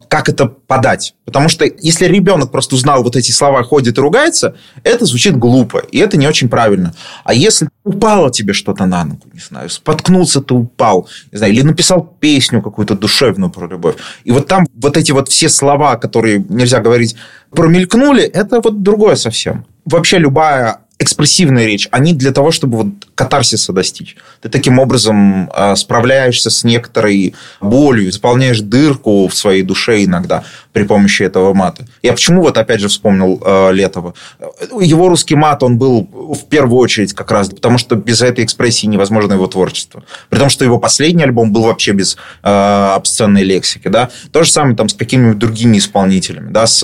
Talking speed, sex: 175 wpm, male